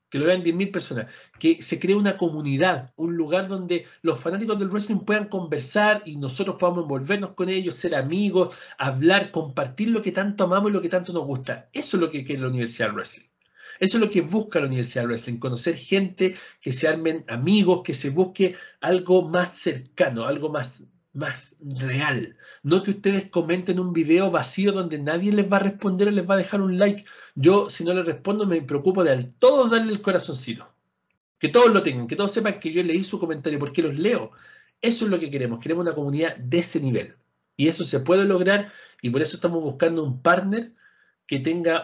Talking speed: 205 wpm